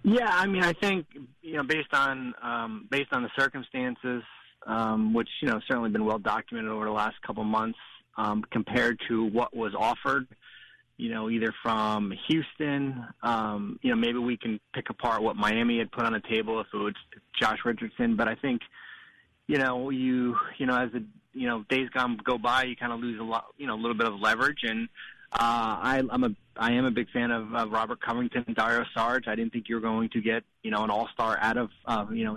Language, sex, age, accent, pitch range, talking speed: English, male, 20-39, American, 115-140 Hz, 220 wpm